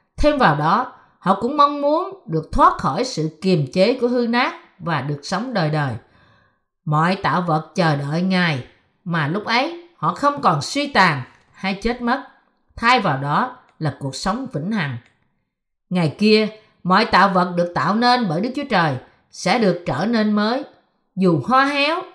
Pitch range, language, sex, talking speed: 165-245 Hz, Vietnamese, female, 180 wpm